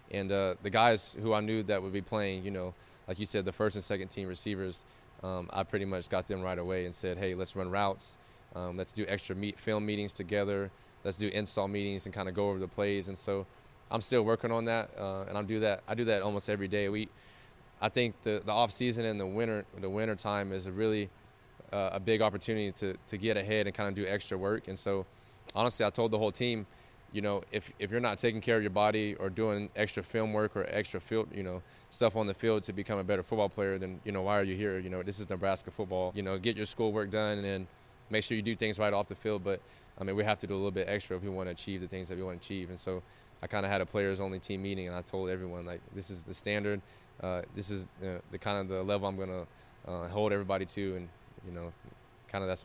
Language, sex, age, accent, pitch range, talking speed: English, male, 20-39, American, 95-110 Hz, 265 wpm